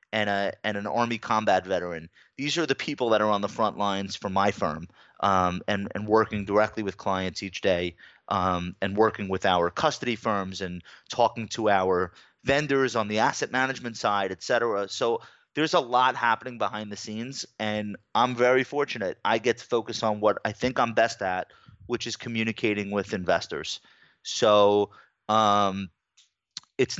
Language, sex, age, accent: English, male, 30-49, American